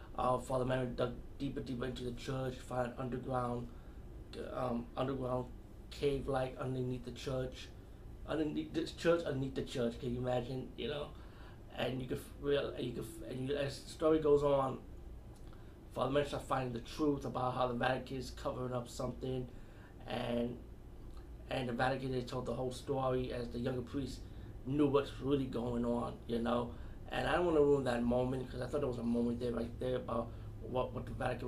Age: 30-49